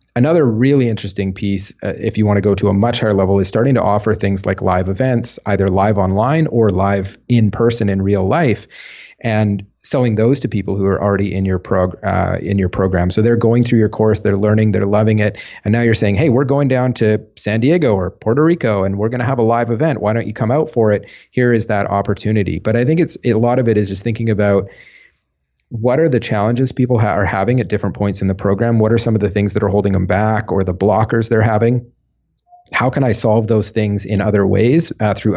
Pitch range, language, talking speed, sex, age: 100-120 Hz, English, 245 wpm, male, 30-49